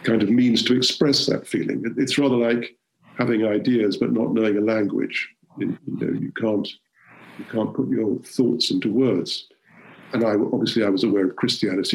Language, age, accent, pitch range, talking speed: English, 50-69, British, 105-120 Hz, 180 wpm